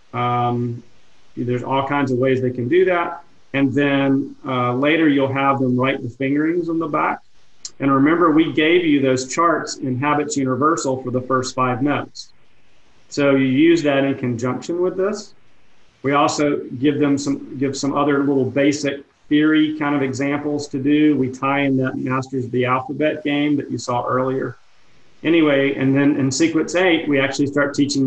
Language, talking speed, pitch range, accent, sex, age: English, 180 wpm, 130-150 Hz, American, male, 40-59